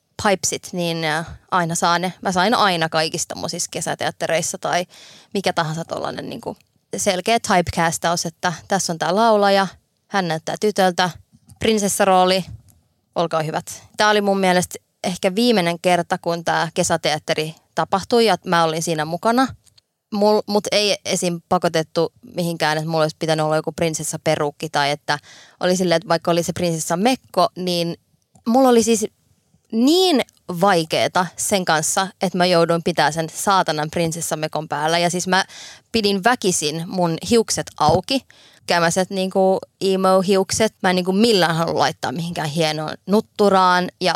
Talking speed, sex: 145 wpm, female